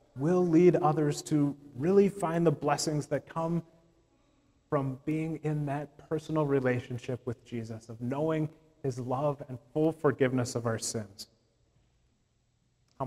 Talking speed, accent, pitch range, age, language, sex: 135 wpm, American, 125-155 Hz, 30-49, English, male